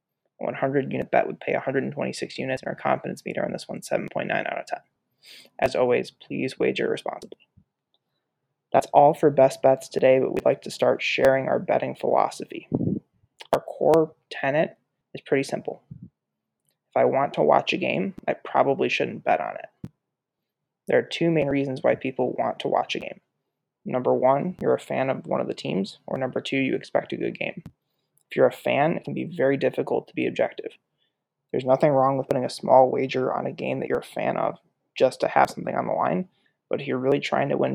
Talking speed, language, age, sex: 205 wpm, English, 20-39, male